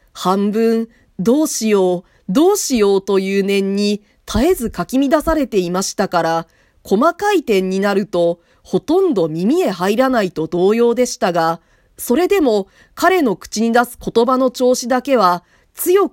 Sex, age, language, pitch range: female, 40-59, Japanese, 180-265 Hz